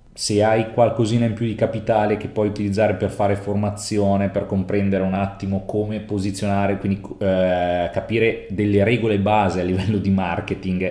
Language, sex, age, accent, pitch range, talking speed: Italian, male, 30-49, native, 95-115 Hz, 160 wpm